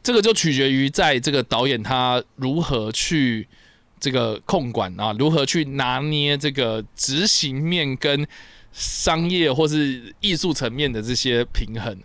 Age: 20-39